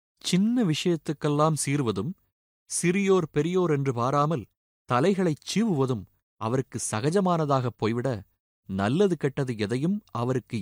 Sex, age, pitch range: male, 30-49, 105-150 Hz